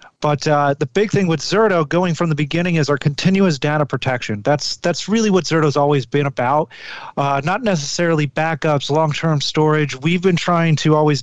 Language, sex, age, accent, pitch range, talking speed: English, male, 30-49, American, 140-160 Hz, 185 wpm